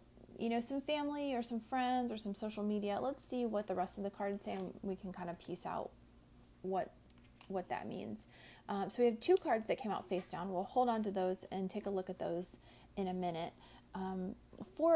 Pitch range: 190-235 Hz